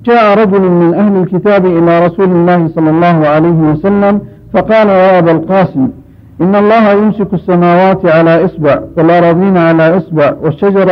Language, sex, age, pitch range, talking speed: Arabic, male, 50-69, 160-195 Hz, 135 wpm